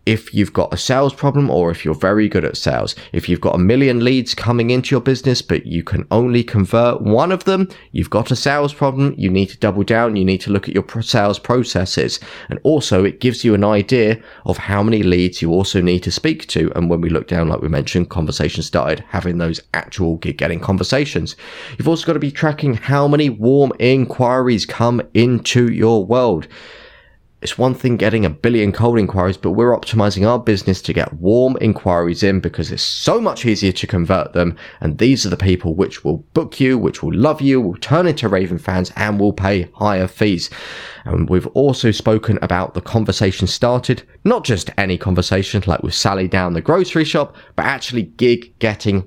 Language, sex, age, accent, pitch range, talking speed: English, male, 20-39, British, 90-125 Hz, 205 wpm